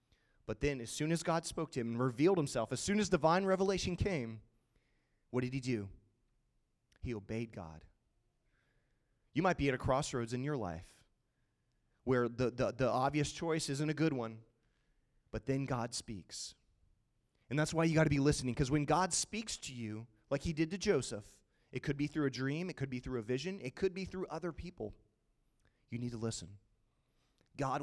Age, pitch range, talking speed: 30-49, 110-140 Hz, 195 wpm